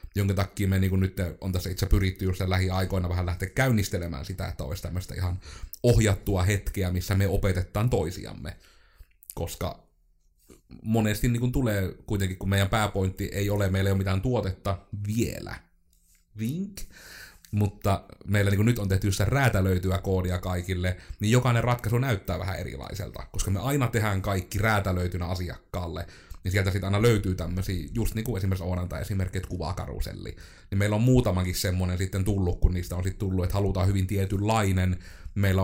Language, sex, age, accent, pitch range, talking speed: Finnish, male, 30-49, native, 90-105 Hz, 155 wpm